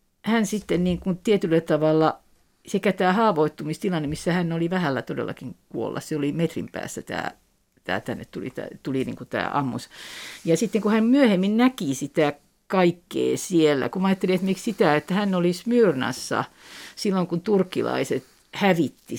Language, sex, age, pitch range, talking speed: Finnish, female, 50-69, 150-185 Hz, 155 wpm